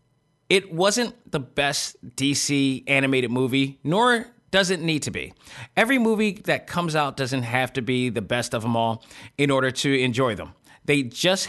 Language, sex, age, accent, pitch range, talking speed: English, male, 30-49, American, 130-165 Hz, 180 wpm